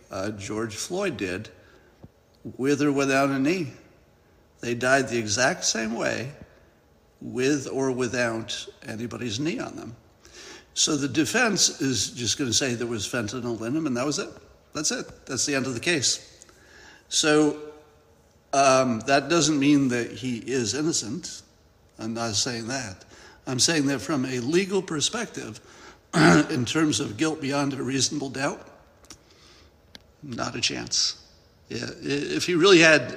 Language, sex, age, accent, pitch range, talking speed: English, male, 60-79, American, 115-145 Hz, 150 wpm